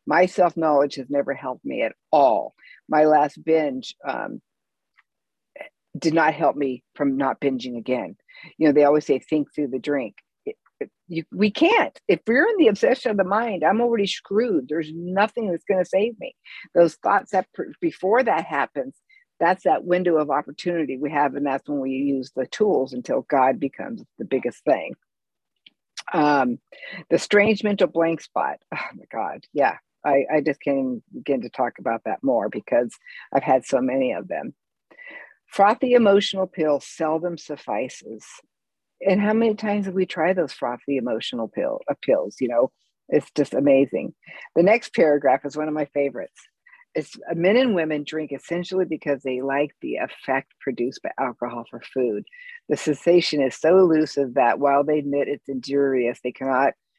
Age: 50-69